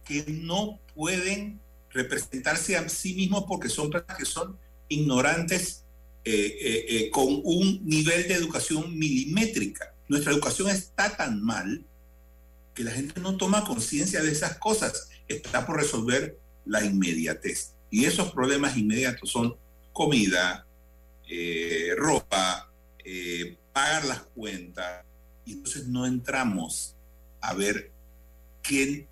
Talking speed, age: 125 wpm, 50-69